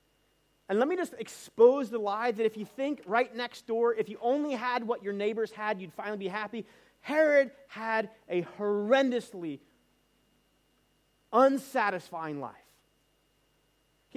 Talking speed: 140 wpm